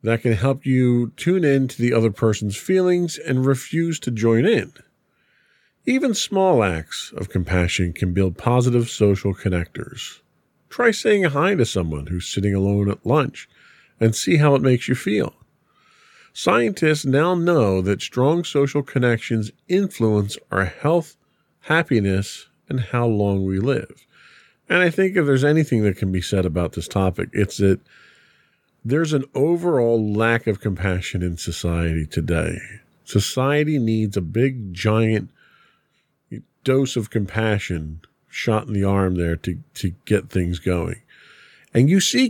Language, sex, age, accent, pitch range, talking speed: English, male, 40-59, American, 95-140 Hz, 150 wpm